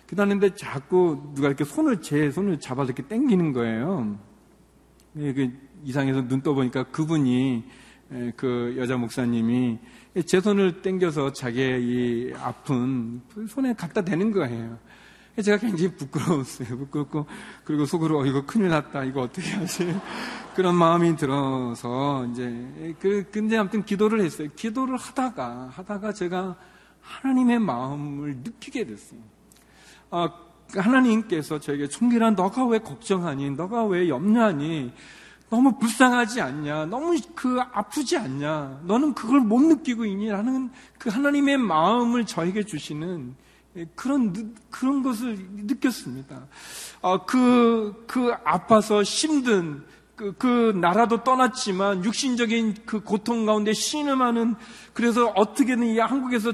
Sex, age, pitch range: male, 40-59, 150-245 Hz